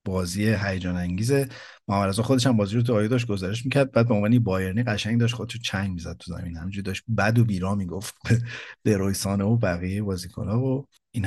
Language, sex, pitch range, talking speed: Persian, male, 95-120 Hz, 195 wpm